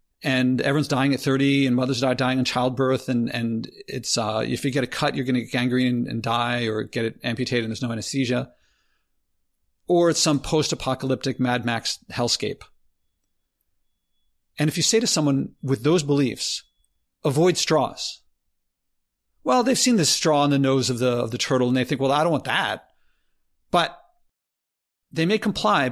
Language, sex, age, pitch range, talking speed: English, male, 50-69, 115-155 Hz, 185 wpm